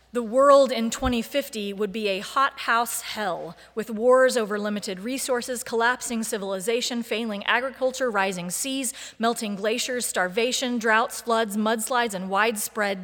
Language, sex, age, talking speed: English, female, 30-49, 130 wpm